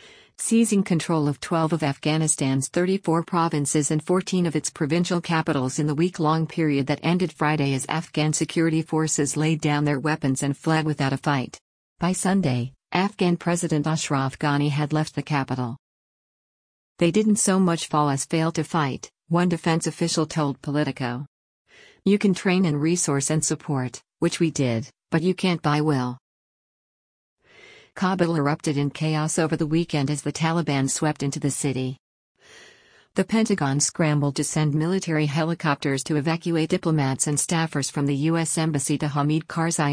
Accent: American